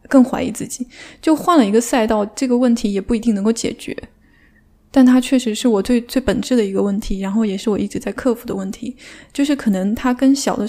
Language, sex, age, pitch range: Chinese, female, 10-29, 210-250 Hz